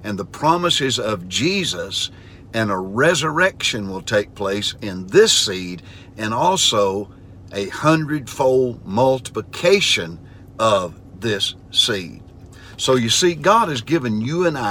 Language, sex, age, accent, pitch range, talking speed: English, male, 60-79, American, 95-130 Hz, 120 wpm